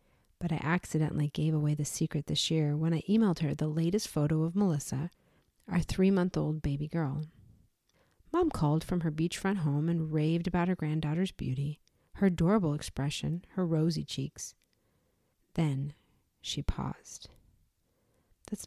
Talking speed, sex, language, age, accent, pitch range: 140 wpm, female, English, 40-59, American, 150-210 Hz